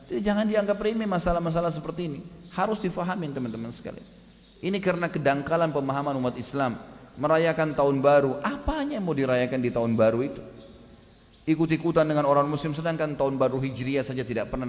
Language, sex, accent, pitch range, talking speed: English, male, Indonesian, 125-170 Hz, 155 wpm